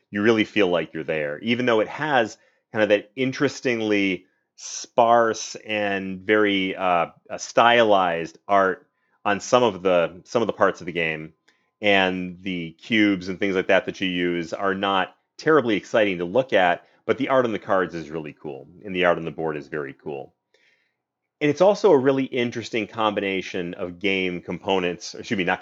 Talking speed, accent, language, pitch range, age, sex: 185 wpm, American, English, 95-120 Hz, 30-49, male